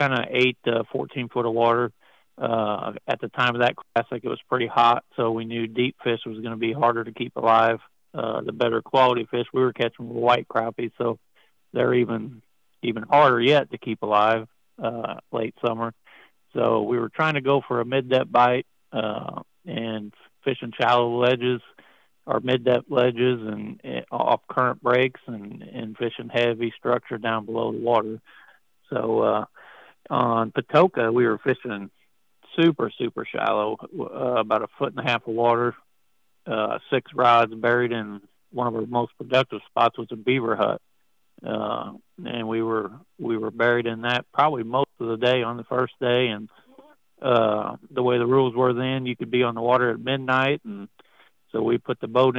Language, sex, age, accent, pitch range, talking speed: English, male, 50-69, American, 115-125 Hz, 185 wpm